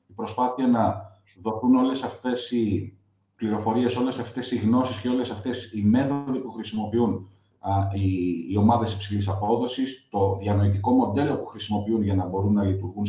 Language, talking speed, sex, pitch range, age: Greek, 155 wpm, male, 100-120 Hz, 30-49